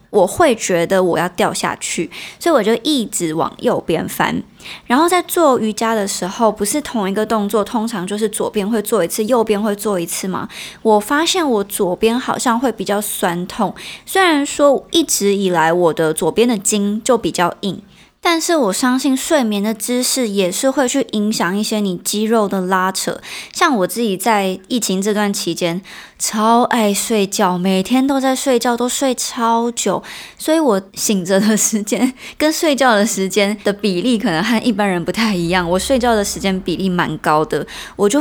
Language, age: Chinese, 20-39